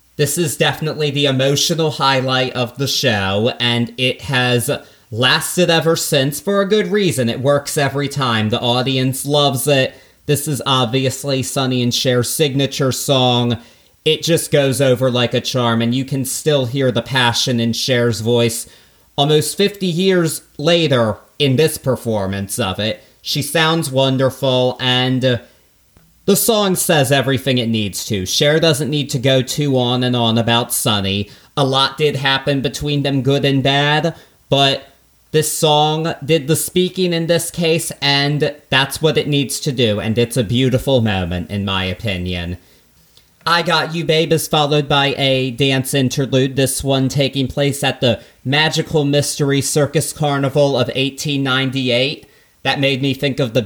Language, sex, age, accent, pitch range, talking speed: English, male, 30-49, American, 125-150 Hz, 160 wpm